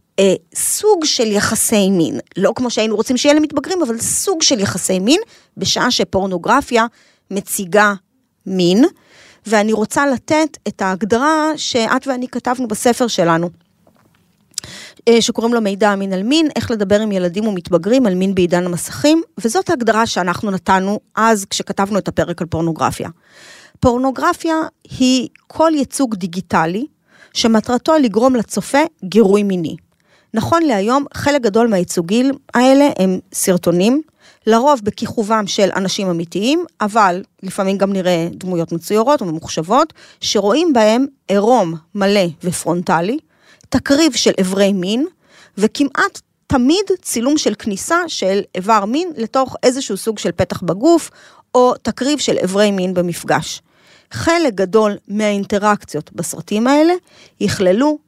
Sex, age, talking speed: female, 30-49, 125 wpm